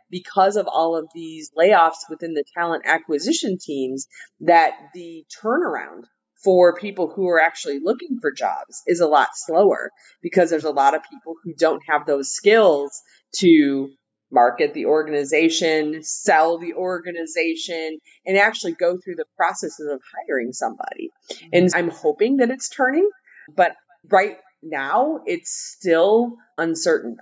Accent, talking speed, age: American, 145 wpm, 30-49